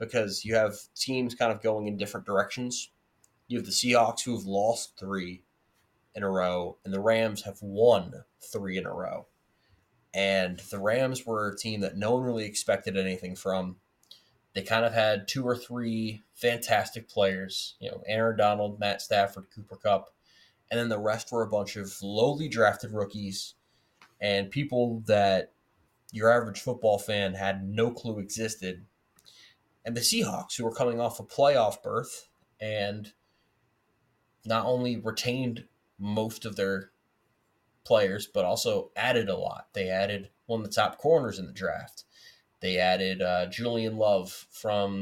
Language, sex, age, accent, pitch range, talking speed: English, male, 20-39, American, 100-115 Hz, 160 wpm